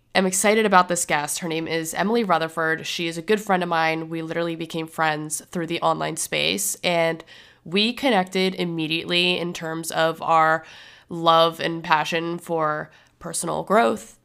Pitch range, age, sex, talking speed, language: 165-185 Hz, 20-39, female, 165 wpm, English